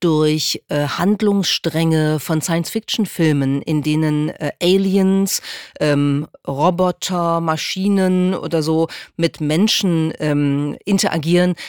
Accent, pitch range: German, 150-190 Hz